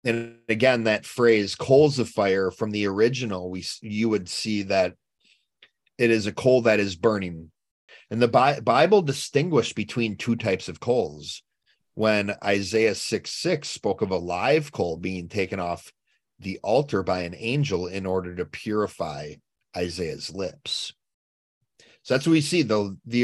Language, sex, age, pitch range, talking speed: English, male, 30-49, 95-120 Hz, 160 wpm